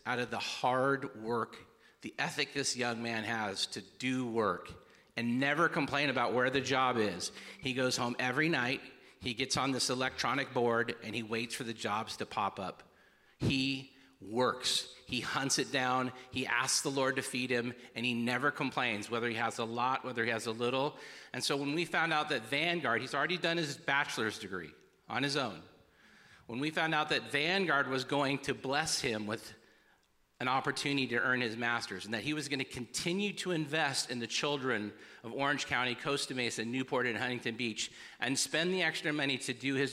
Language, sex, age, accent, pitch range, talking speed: English, male, 40-59, American, 115-140 Hz, 200 wpm